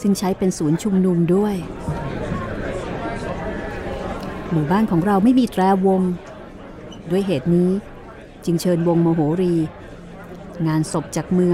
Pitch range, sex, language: 165-195 Hz, female, Thai